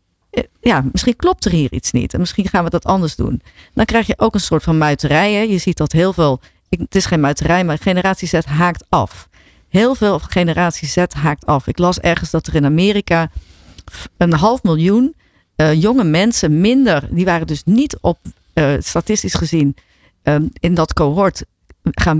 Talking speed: 185 wpm